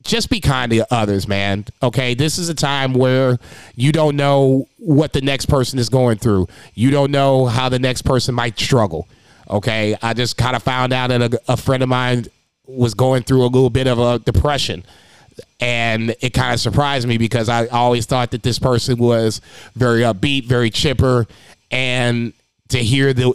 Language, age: English, 30-49